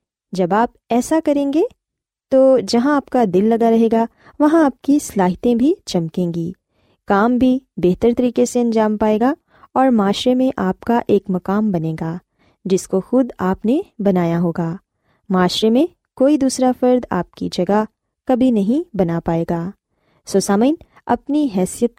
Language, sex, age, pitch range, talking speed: Urdu, female, 20-39, 190-255 Hz, 165 wpm